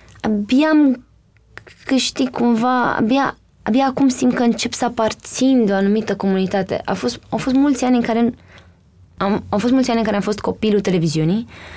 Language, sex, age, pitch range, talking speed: Romanian, female, 20-39, 195-260 Hz, 175 wpm